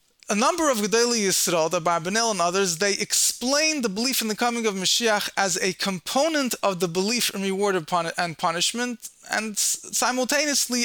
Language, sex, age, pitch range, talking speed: English, male, 20-39, 170-225 Hz, 165 wpm